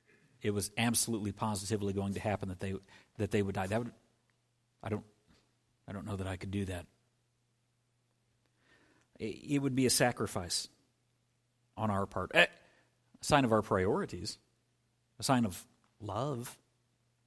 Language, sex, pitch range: English, male, 105-125 Hz